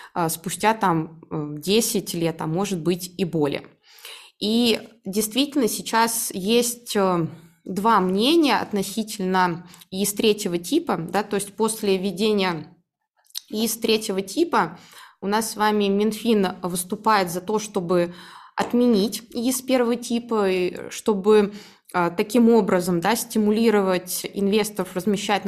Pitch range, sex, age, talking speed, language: 185-230 Hz, female, 20-39, 105 wpm, Russian